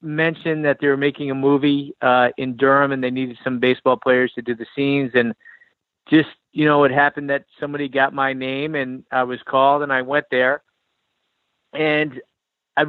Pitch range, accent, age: 130-155 Hz, American, 40-59